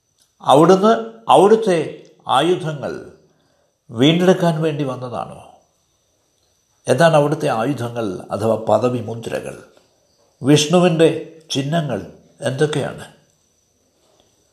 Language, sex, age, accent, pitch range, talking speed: Malayalam, male, 60-79, native, 135-180 Hz, 60 wpm